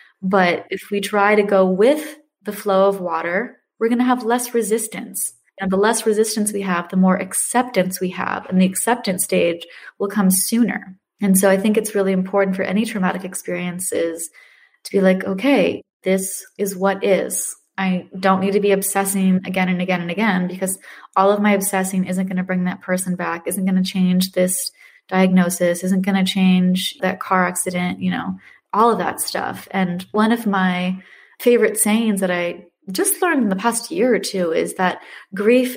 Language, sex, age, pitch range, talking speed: English, female, 20-39, 185-220 Hz, 195 wpm